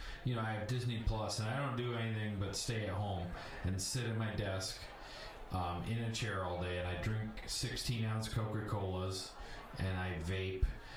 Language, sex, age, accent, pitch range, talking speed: English, male, 30-49, American, 100-130 Hz, 195 wpm